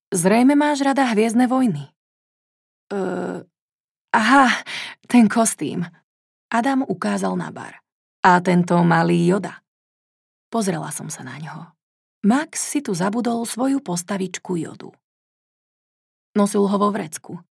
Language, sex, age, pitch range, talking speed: Slovak, female, 30-49, 190-245 Hz, 115 wpm